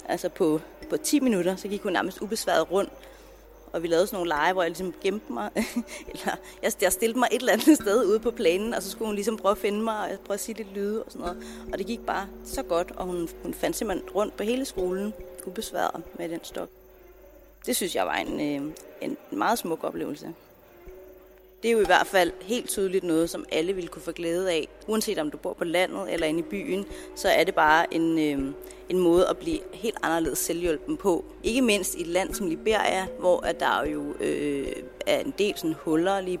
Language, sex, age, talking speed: Danish, female, 30-49, 225 wpm